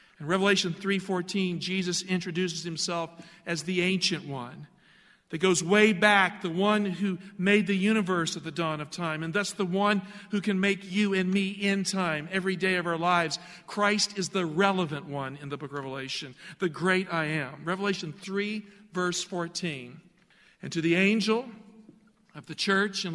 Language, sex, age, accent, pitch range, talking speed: English, male, 50-69, American, 170-215 Hz, 175 wpm